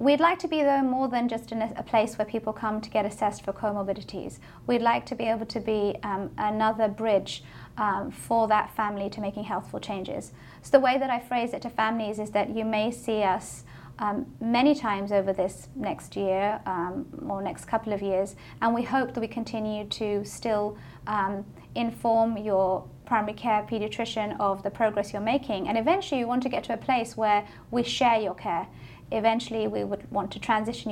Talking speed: 200 wpm